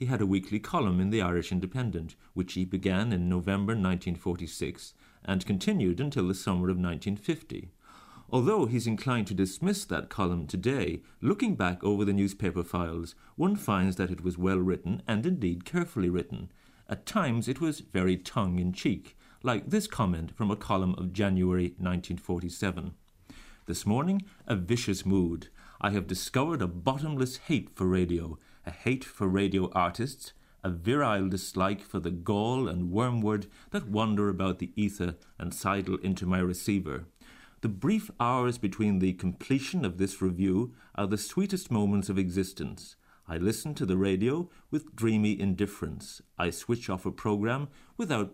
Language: English